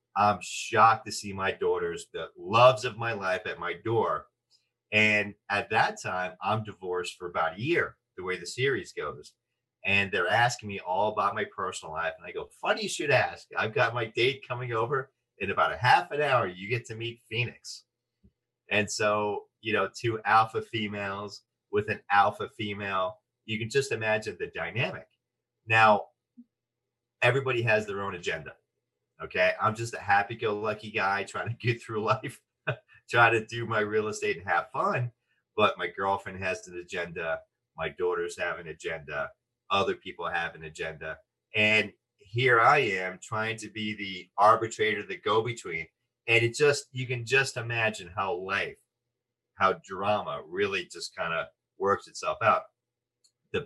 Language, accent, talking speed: English, American, 170 wpm